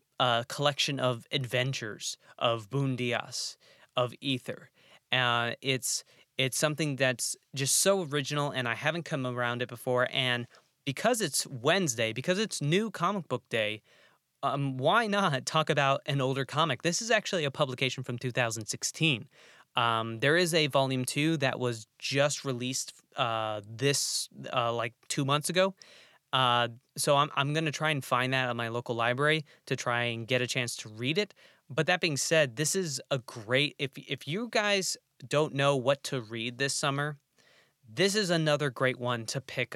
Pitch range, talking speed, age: 120-150 Hz, 170 wpm, 20-39